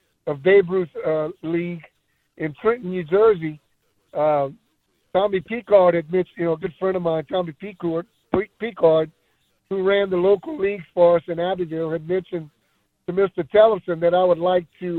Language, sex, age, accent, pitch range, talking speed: English, male, 60-79, American, 160-200 Hz, 170 wpm